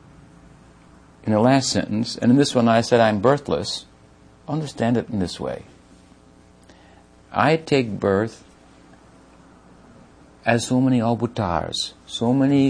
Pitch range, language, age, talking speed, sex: 80-125 Hz, English, 60-79, 125 wpm, male